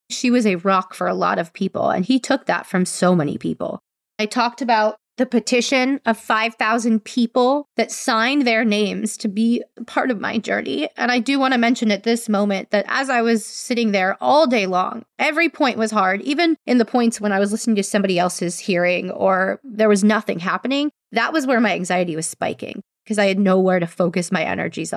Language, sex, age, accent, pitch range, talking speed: English, female, 20-39, American, 200-245 Hz, 215 wpm